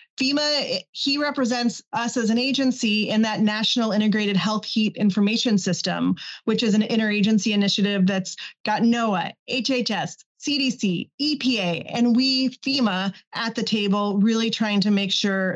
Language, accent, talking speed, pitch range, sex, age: English, American, 145 wpm, 200-235 Hz, female, 30-49